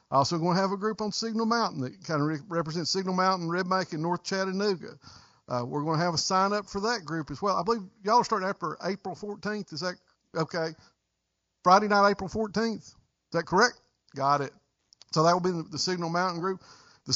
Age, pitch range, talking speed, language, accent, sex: 50-69, 165-210 Hz, 215 wpm, English, American, male